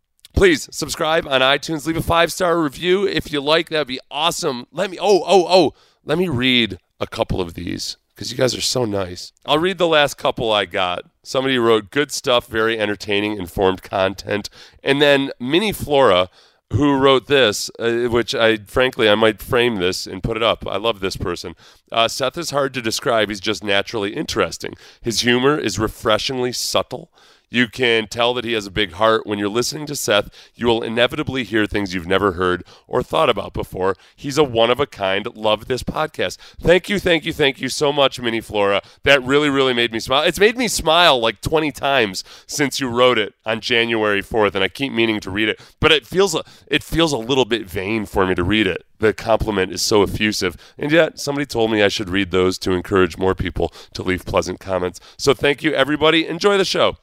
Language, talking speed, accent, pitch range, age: English, 205 wpm, American, 105-145 Hz, 40-59